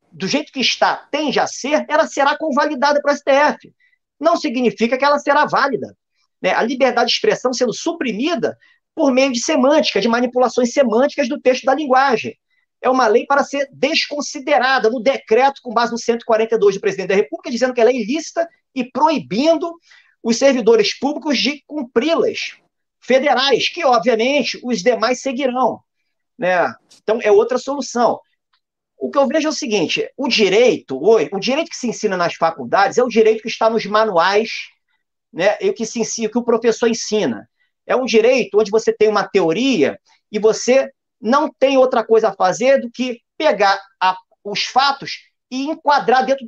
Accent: Brazilian